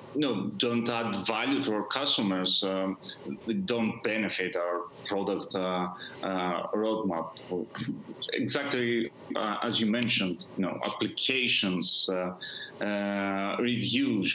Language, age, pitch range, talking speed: English, 30-49, 100-120 Hz, 110 wpm